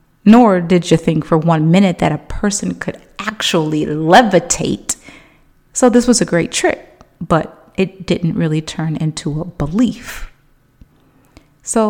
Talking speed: 140 wpm